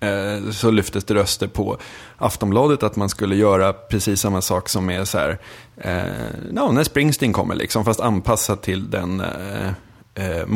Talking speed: 155 wpm